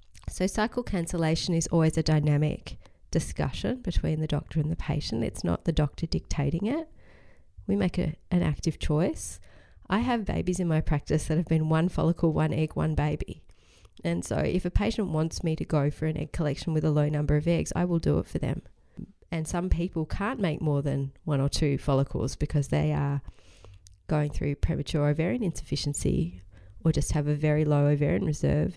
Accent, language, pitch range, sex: Australian, English, 130-165 Hz, female